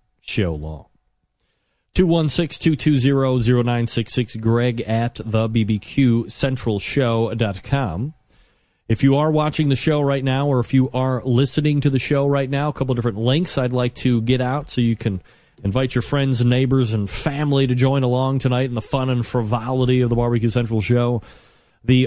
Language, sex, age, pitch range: English, male, 40-59, 110-135 Hz